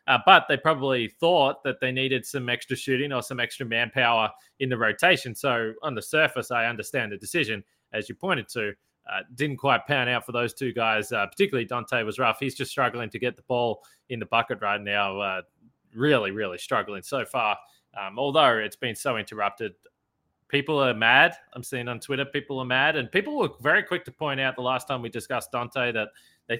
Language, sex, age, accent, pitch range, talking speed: English, male, 20-39, Australian, 120-140 Hz, 210 wpm